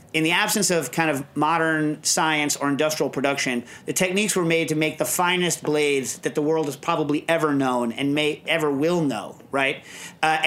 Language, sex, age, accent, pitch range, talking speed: English, male, 40-59, American, 145-170 Hz, 195 wpm